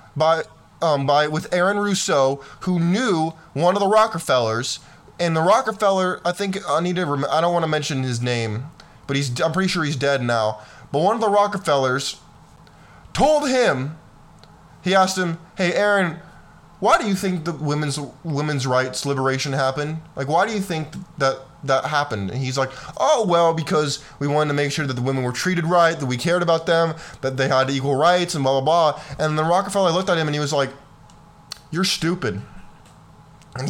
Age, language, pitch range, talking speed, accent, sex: 20-39, English, 145-200 Hz, 195 wpm, American, male